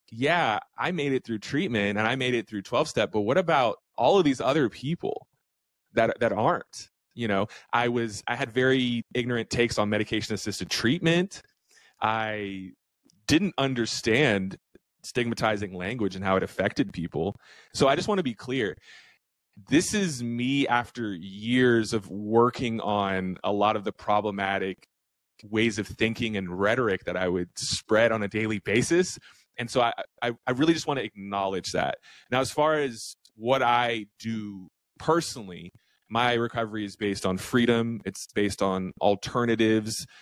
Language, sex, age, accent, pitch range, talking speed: English, male, 20-39, American, 100-120 Hz, 160 wpm